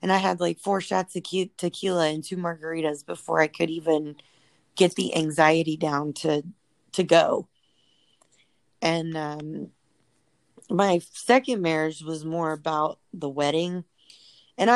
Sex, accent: female, American